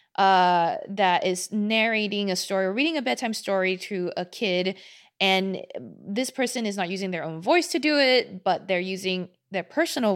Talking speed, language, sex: 185 wpm, English, female